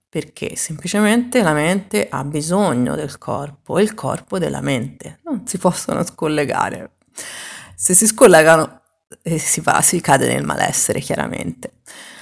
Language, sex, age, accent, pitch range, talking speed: Italian, female, 30-49, native, 145-200 Hz, 135 wpm